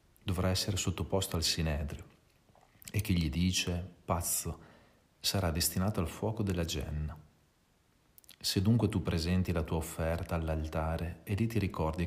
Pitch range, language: 80-95 Hz, Italian